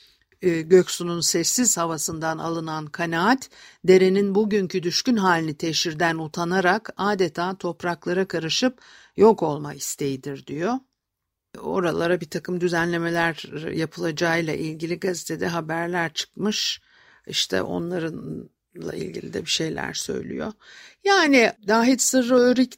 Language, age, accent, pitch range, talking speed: Turkish, 60-79, native, 165-210 Hz, 100 wpm